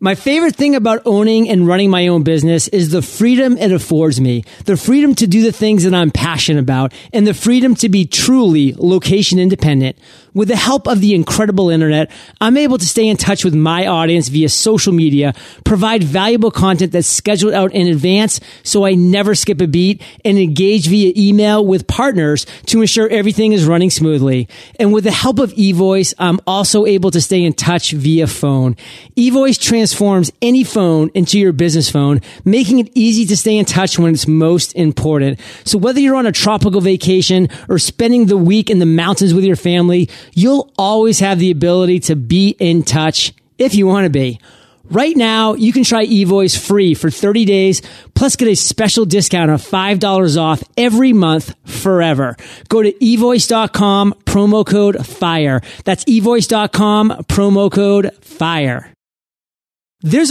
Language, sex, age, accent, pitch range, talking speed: English, male, 30-49, American, 160-215 Hz, 175 wpm